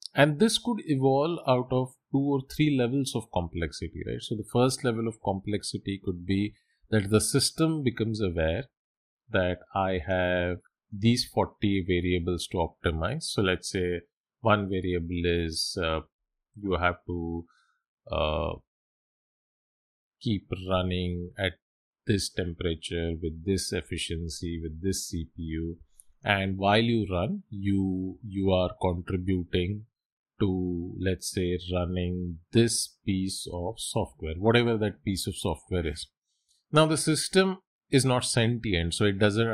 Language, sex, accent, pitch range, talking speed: English, male, Indian, 90-115 Hz, 130 wpm